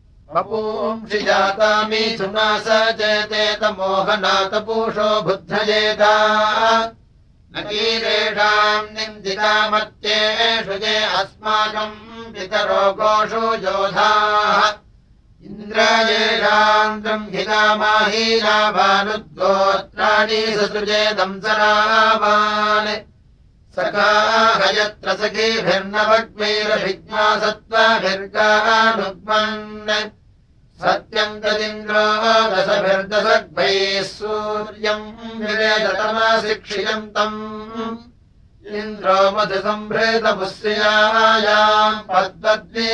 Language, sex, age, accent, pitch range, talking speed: Russian, male, 60-79, Indian, 205-215 Hz, 40 wpm